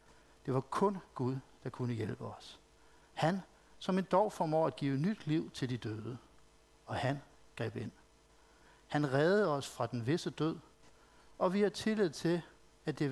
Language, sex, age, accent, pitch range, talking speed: Danish, male, 60-79, native, 130-165 Hz, 175 wpm